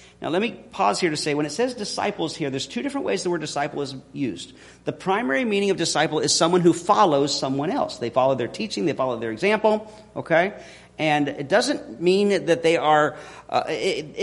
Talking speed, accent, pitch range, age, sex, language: 205 wpm, American, 145-215 Hz, 40-59, male, English